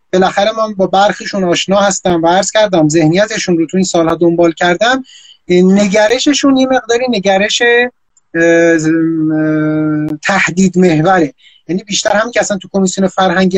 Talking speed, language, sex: 135 wpm, Persian, male